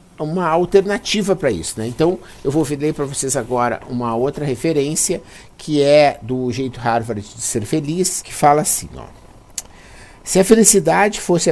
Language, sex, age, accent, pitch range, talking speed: Portuguese, male, 50-69, Brazilian, 125-170 Hz, 155 wpm